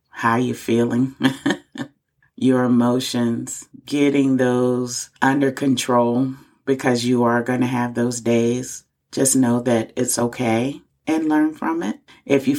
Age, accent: 30-49, American